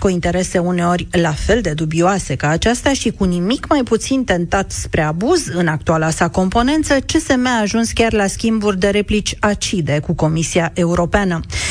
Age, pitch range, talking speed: 40-59, 180-245 Hz, 170 wpm